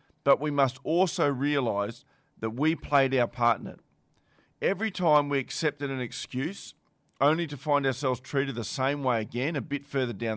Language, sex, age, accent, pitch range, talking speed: English, male, 40-59, Australian, 120-150 Hz, 180 wpm